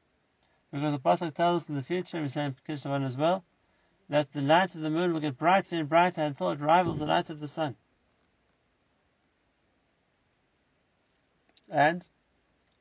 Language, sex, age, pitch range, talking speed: English, male, 60-79, 140-175 Hz, 160 wpm